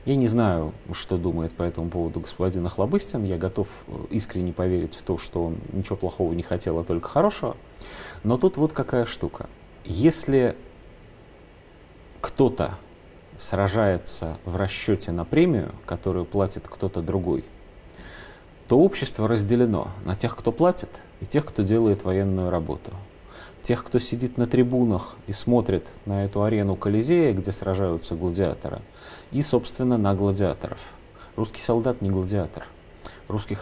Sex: male